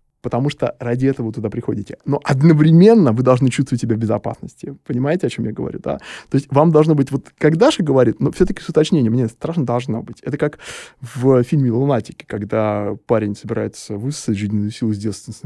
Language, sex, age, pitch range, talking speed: Russian, male, 20-39, 120-155 Hz, 200 wpm